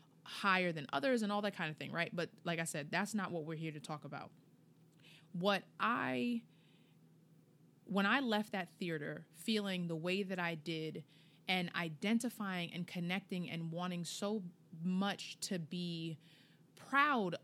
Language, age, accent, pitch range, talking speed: English, 20-39, American, 170-205 Hz, 160 wpm